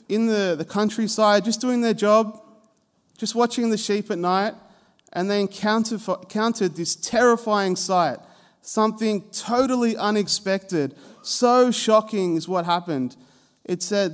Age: 30-49